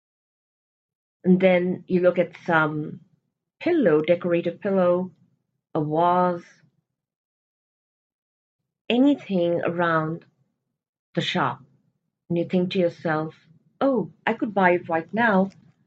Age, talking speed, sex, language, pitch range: 40-59, 100 wpm, female, English, 155-205 Hz